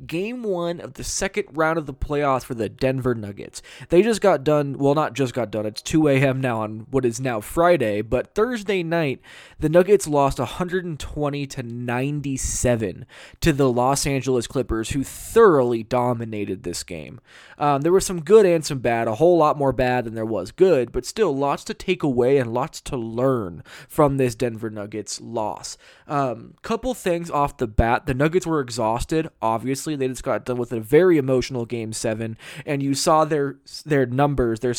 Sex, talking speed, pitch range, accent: male, 190 wpm, 120-155 Hz, American